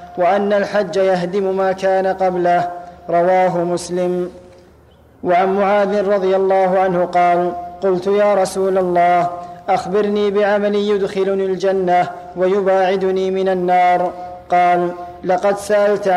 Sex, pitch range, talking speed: male, 180-200 Hz, 105 wpm